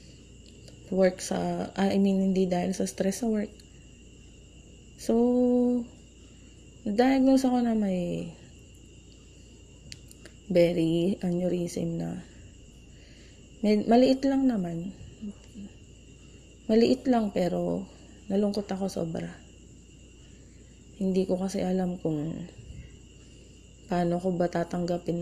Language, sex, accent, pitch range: Filipino, female, native, 175-215 Hz